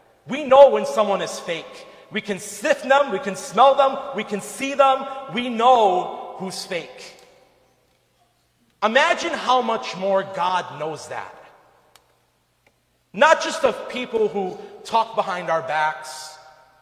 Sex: male